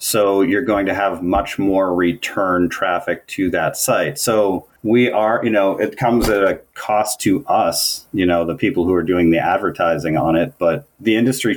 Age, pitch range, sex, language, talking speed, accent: 30-49, 85-100 Hz, male, English, 195 wpm, American